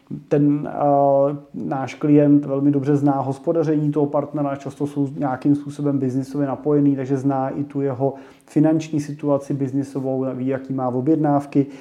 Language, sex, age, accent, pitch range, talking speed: Czech, male, 30-49, native, 135-145 Hz, 145 wpm